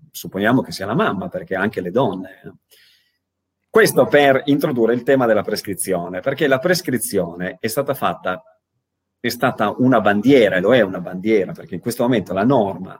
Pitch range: 100-135 Hz